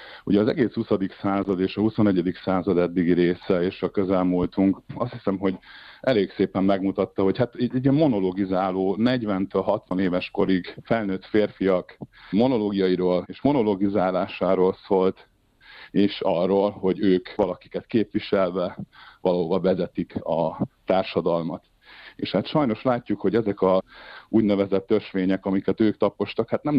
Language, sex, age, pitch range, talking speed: Hungarian, male, 50-69, 95-110 Hz, 130 wpm